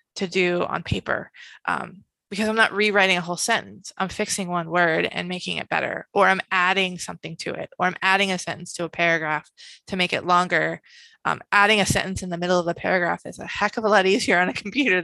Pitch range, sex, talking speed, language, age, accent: 175-200 Hz, female, 230 wpm, English, 20-39, American